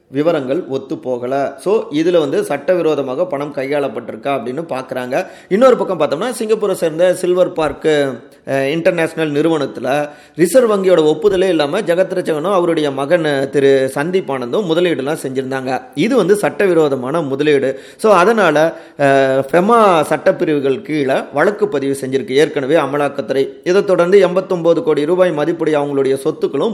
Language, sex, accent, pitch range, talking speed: Tamil, male, native, 140-175 Hz, 120 wpm